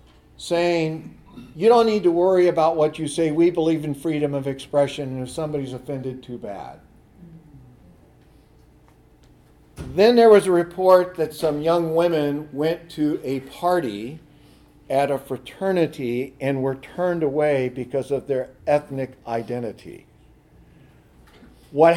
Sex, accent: male, American